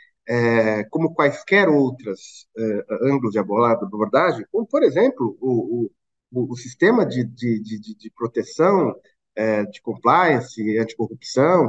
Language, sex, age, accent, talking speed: Portuguese, male, 50-69, Brazilian, 130 wpm